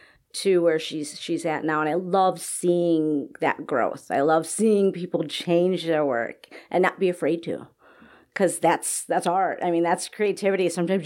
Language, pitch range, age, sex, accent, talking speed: English, 180-235 Hz, 40-59, female, American, 180 wpm